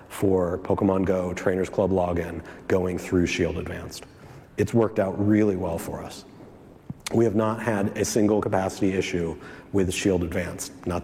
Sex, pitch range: male, 95-110 Hz